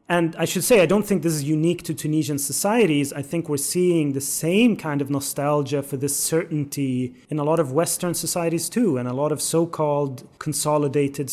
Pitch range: 140-165 Hz